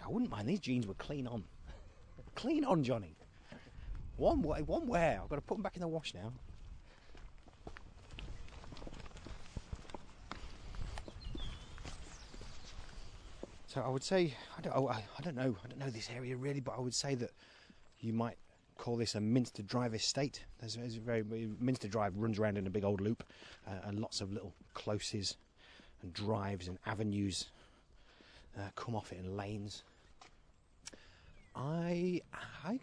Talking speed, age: 155 wpm, 30-49